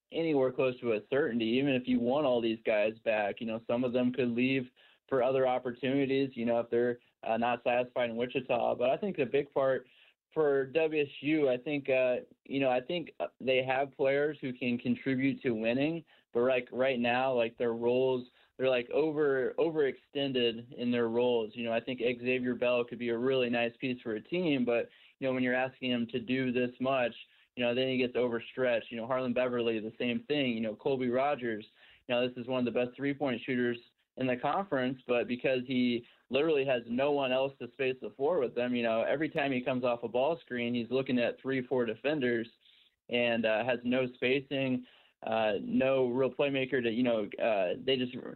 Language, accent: English, American